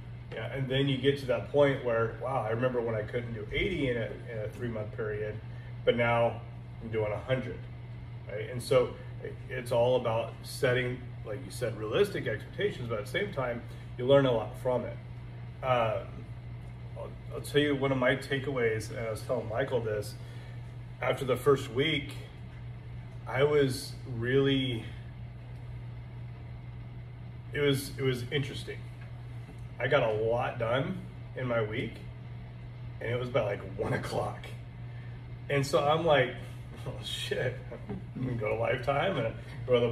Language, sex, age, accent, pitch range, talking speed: English, male, 30-49, American, 120-130 Hz, 165 wpm